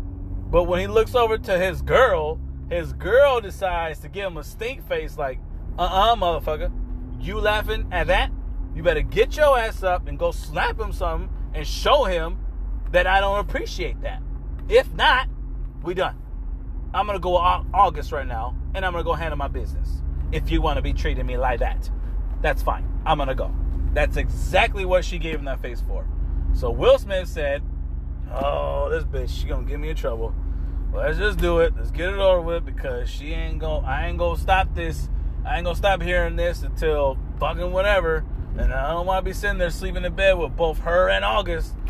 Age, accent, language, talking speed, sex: 30-49, American, English, 205 wpm, male